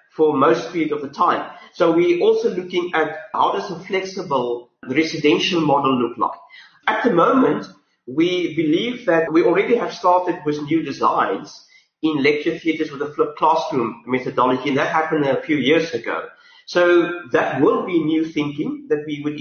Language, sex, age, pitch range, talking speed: English, male, 30-49, 150-220 Hz, 175 wpm